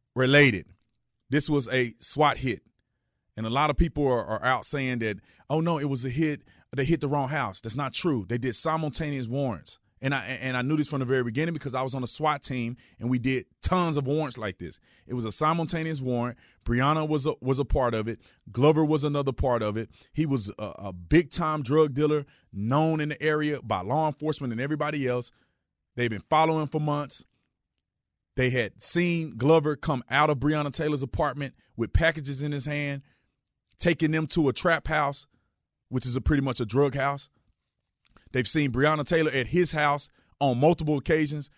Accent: American